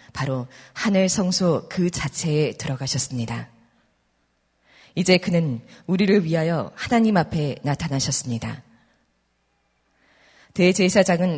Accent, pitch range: native, 125-180 Hz